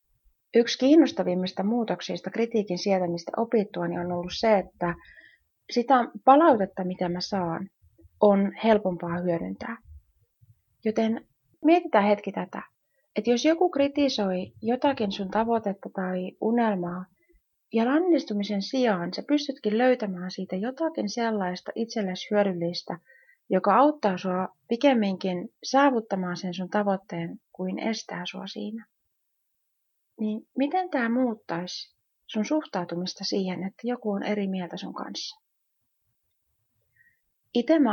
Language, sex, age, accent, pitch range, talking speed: Finnish, female, 30-49, native, 180-235 Hz, 110 wpm